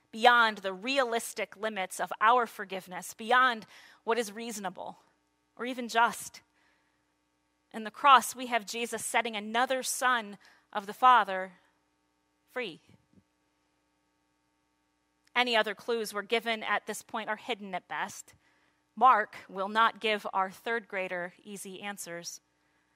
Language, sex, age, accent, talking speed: English, female, 30-49, American, 125 wpm